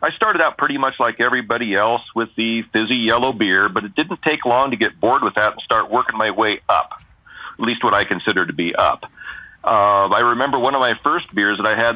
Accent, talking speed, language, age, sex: American, 240 wpm, English, 40-59, male